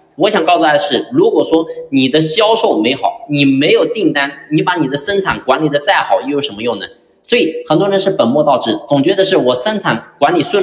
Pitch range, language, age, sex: 120-195 Hz, Chinese, 30-49, male